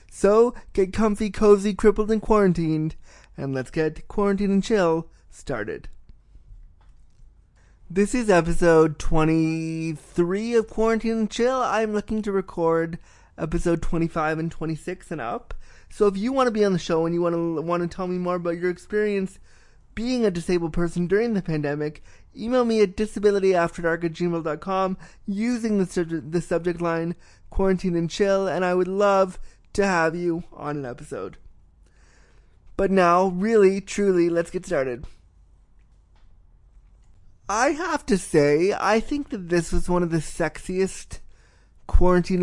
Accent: American